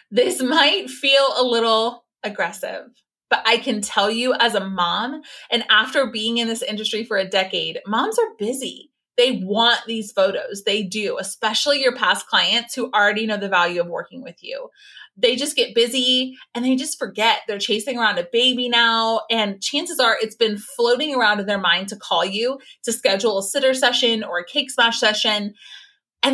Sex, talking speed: female, 190 wpm